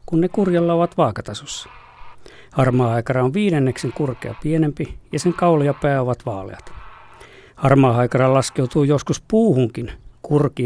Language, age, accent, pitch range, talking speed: Finnish, 50-69, native, 125-160 Hz, 125 wpm